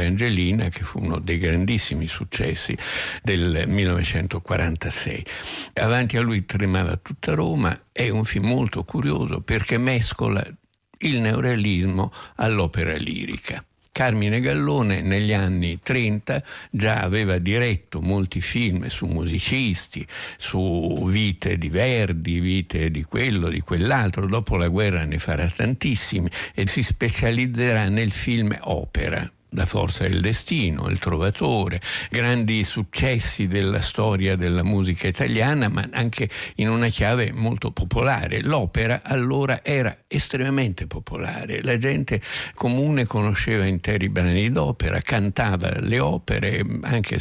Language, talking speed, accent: Italian, 120 wpm, native